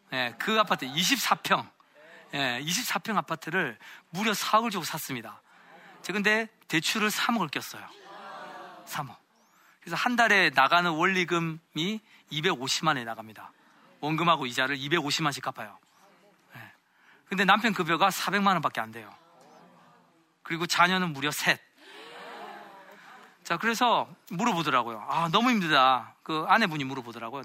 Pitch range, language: 145-210 Hz, Korean